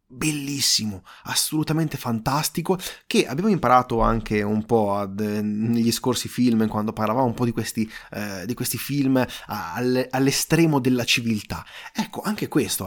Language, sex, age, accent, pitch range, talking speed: Italian, male, 30-49, native, 110-145 Hz, 125 wpm